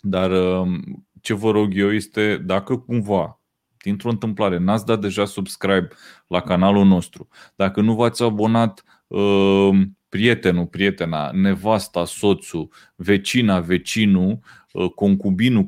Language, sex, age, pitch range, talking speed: Romanian, male, 30-49, 90-115 Hz, 105 wpm